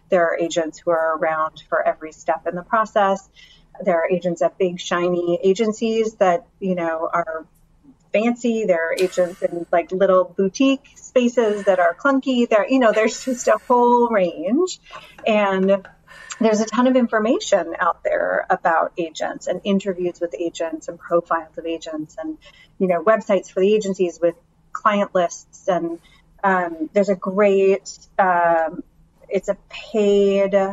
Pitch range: 170-215 Hz